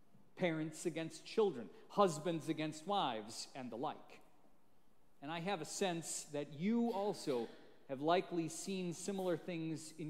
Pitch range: 160-230 Hz